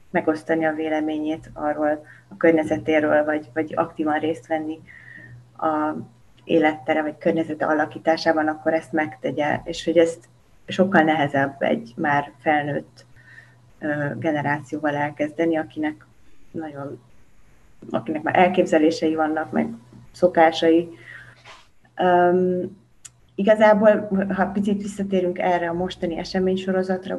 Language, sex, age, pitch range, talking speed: Hungarian, female, 30-49, 150-170 Hz, 105 wpm